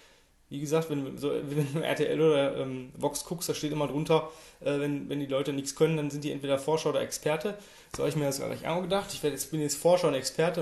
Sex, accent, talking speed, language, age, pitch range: male, German, 250 wpm, German, 20-39, 140-165 Hz